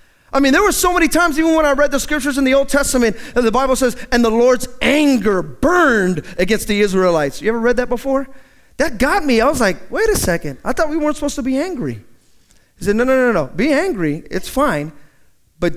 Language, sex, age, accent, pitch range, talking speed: English, male, 30-49, American, 200-285 Hz, 235 wpm